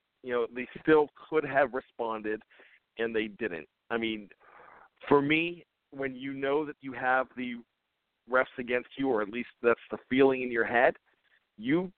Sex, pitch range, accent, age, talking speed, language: male, 110-135 Hz, American, 50-69, 170 wpm, English